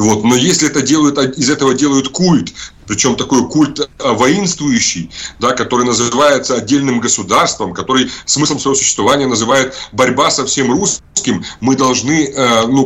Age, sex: 30-49, male